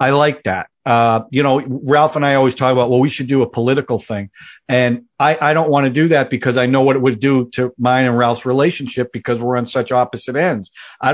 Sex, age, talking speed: male, 50-69, 250 wpm